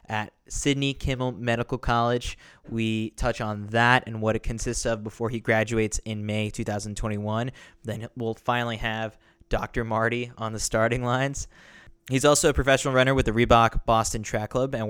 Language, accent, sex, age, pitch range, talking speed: English, American, male, 20-39, 110-130 Hz, 170 wpm